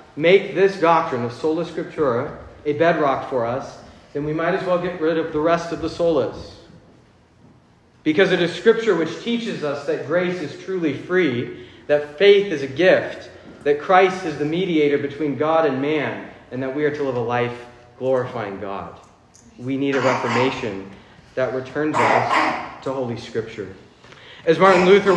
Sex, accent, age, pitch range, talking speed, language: male, American, 40-59, 145-190 Hz, 170 wpm, English